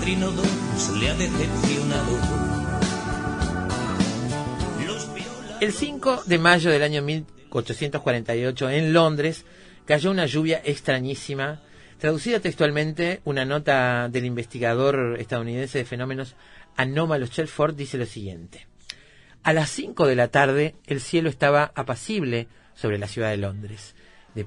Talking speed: 105 wpm